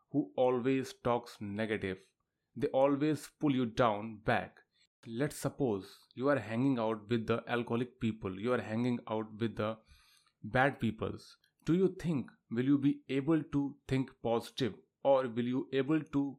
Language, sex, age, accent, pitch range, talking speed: Hindi, male, 30-49, native, 115-140 Hz, 155 wpm